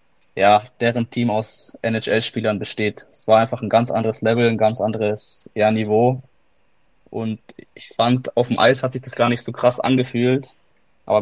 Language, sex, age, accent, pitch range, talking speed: German, male, 20-39, German, 110-120 Hz, 175 wpm